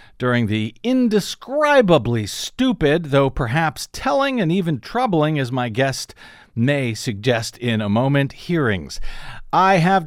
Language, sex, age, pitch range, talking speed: English, male, 50-69, 130-190 Hz, 125 wpm